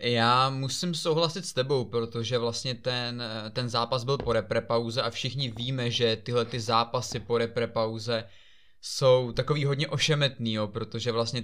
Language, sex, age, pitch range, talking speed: Czech, male, 20-39, 115-130 Hz, 150 wpm